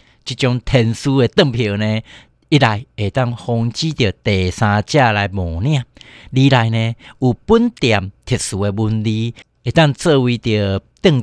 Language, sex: Chinese, male